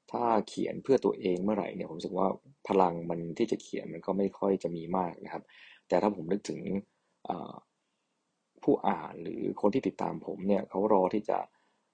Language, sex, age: Thai, male, 20-39